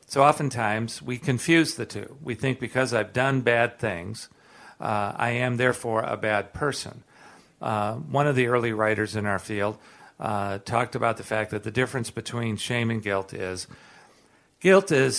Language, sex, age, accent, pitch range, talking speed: English, male, 50-69, American, 105-130 Hz, 175 wpm